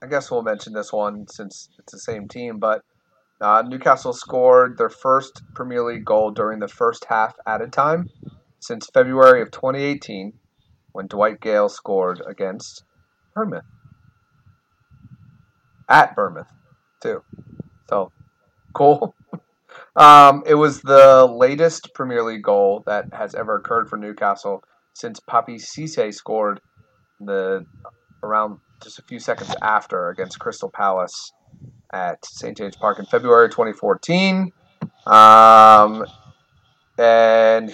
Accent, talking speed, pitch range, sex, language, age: American, 125 wpm, 110-140 Hz, male, English, 30-49